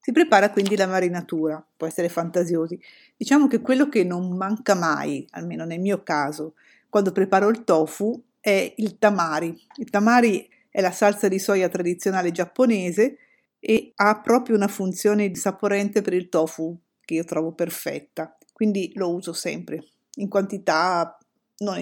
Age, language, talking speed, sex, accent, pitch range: 50-69, Italian, 150 wpm, female, native, 175-225 Hz